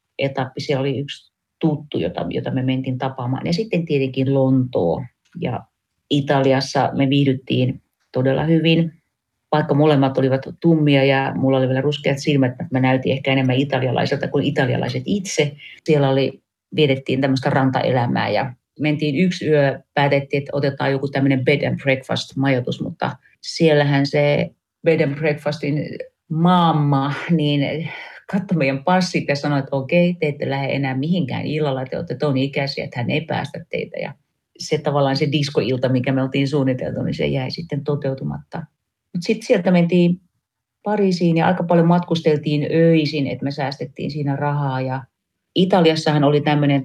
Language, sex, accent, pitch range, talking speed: Finnish, female, native, 135-160 Hz, 150 wpm